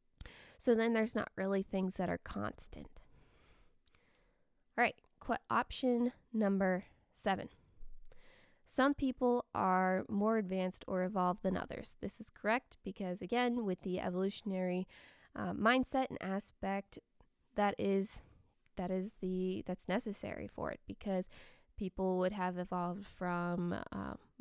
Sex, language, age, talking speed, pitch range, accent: female, English, 20-39, 130 wpm, 185-235 Hz, American